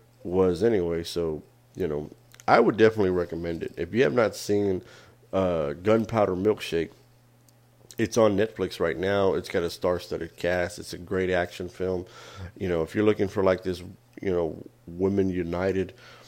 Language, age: English, 30-49